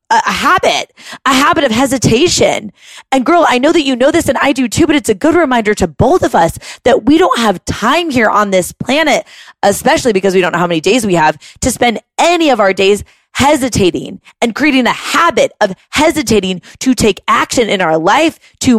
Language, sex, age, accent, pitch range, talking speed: English, female, 20-39, American, 205-300 Hz, 210 wpm